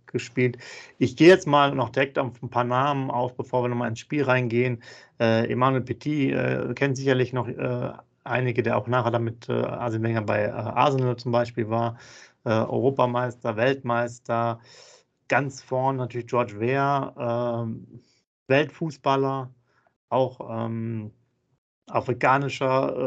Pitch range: 120-135 Hz